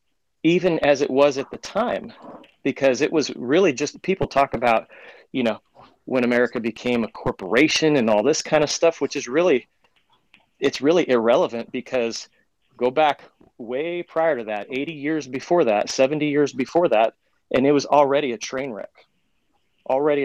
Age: 30-49